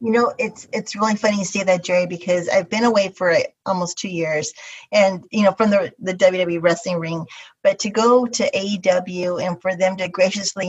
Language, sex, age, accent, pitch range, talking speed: English, female, 30-49, American, 185-230 Hz, 210 wpm